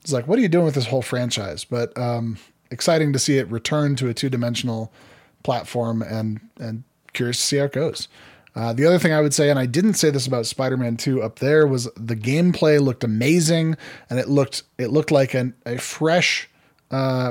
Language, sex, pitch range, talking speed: English, male, 120-150 Hz, 210 wpm